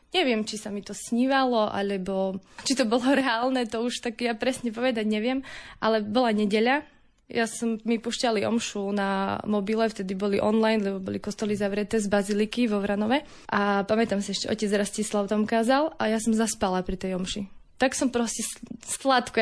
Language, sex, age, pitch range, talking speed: Slovak, female, 20-39, 215-250 Hz, 180 wpm